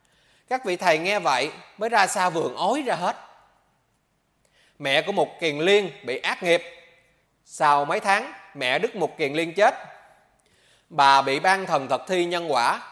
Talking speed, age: 170 wpm, 20-39